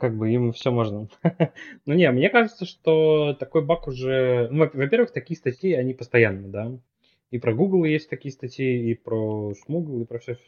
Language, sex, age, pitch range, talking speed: Russian, male, 20-39, 110-130 Hz, 190 wpm